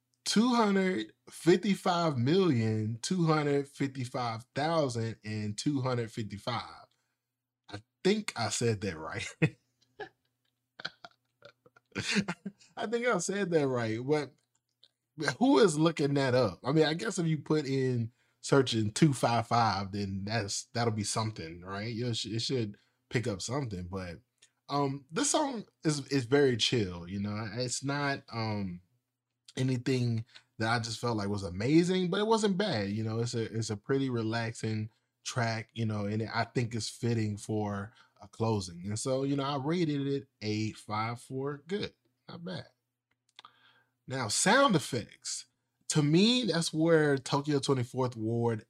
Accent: American